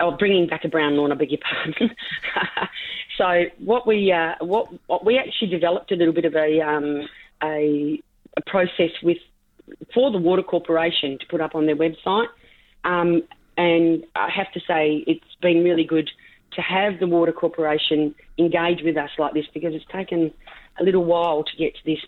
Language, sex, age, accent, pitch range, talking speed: English, female, 40-59, Australian, 150-180 Hz, 190 wpm